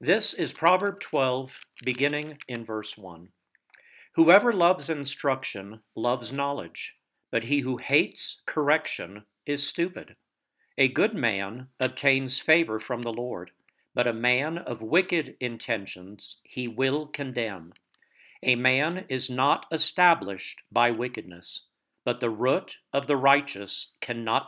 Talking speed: 125 wpm